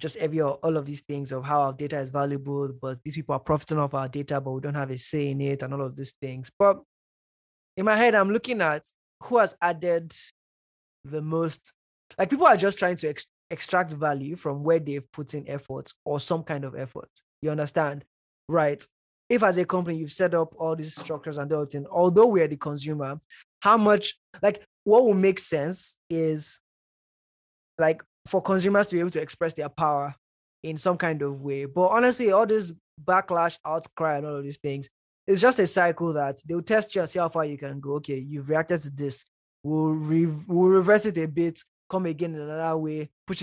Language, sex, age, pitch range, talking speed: English, male, 20-39, 145-180 Hz, 210 wpm